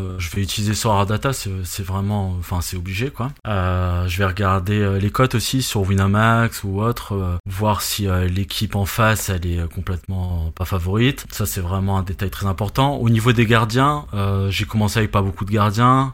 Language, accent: French, French